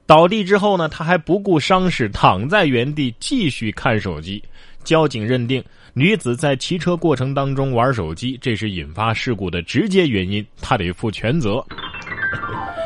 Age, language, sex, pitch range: 20-39, Chinese, male, 100-150 Hz